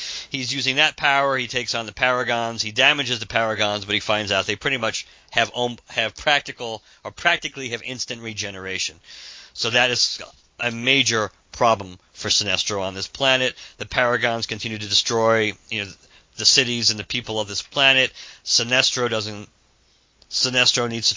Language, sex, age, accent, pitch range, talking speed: English, male, 50-69, American, 105-130 Hz, 165 wpm